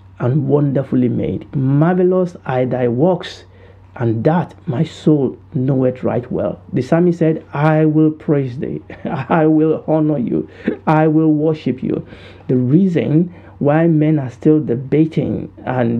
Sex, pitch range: male, 120-155 Hz